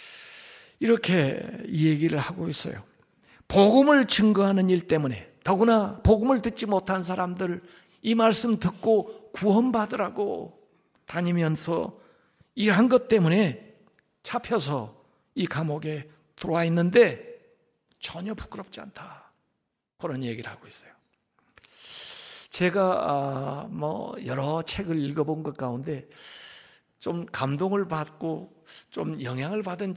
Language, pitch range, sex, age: Korean, 145-205 Hz, male, 60-79